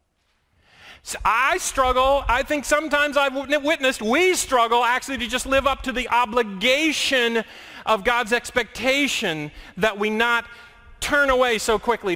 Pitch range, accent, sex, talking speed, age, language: 185-275 Hz, American, male, 135 wpm, 40-59, English